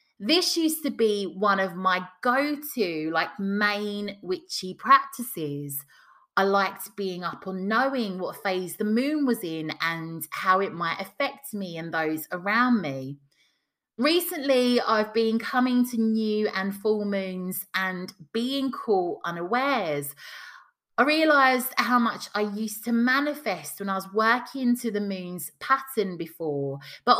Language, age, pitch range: English, 30-49, 185-245 Hz